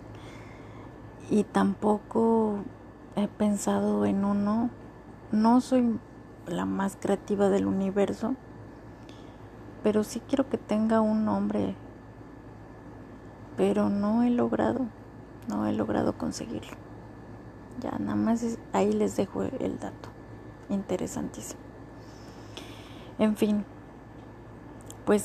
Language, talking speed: Spanish, 95 wpm